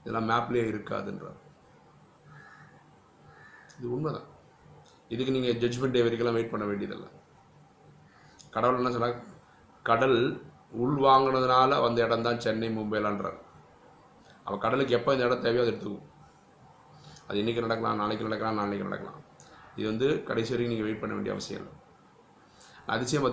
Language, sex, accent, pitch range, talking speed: Tamil, male, native, 110-130 Hz, 120 wpm